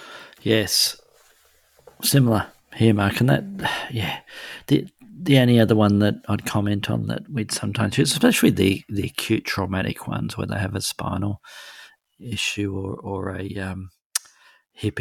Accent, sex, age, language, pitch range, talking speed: Australian, male, 40-59, English, 100-110 Hz, 150 wpm